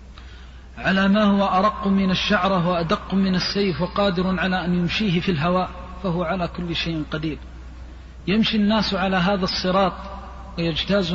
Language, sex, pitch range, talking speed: Arabic, male, 150-200 Hz, 140 wpm